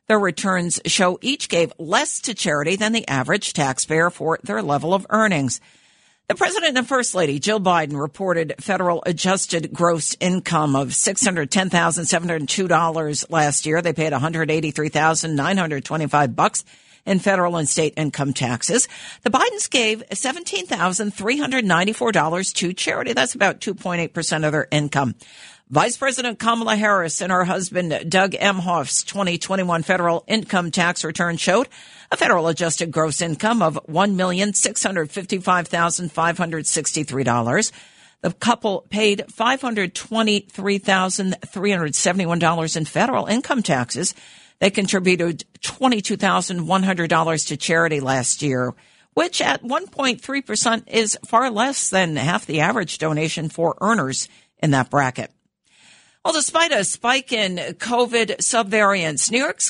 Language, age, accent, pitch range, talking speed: English, 50-69, American, 160-210 Hz, 120 wpm